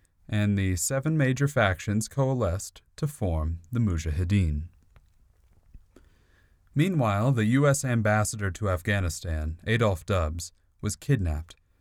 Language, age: English, 30-49